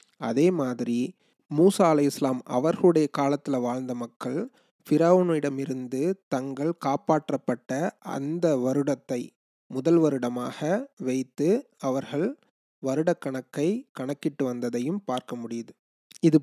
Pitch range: 130-160 Hz